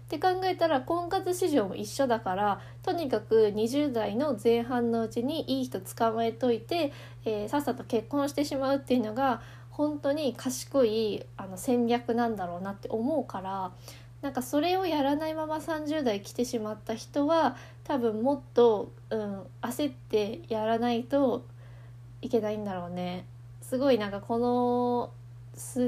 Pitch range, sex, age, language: 195-280 Hz, female, 20-39, Japanese